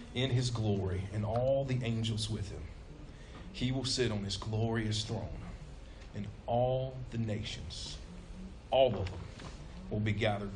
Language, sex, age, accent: English, male, 40-59, American